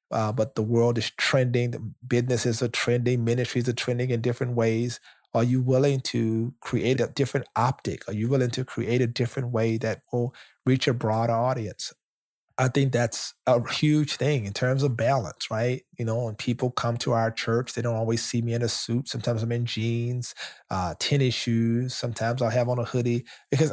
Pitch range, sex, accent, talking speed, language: 115-135 Hz, male, American, 200 wpm, English